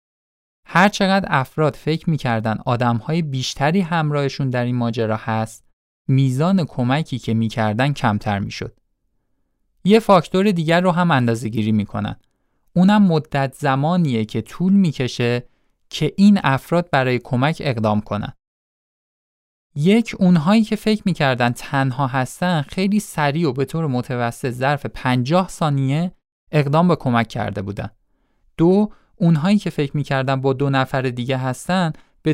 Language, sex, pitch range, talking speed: Persian, male, 115-160 Hz, 130 wpm